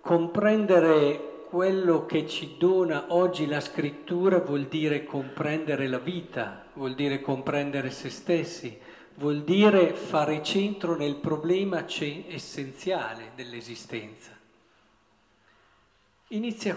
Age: 50-69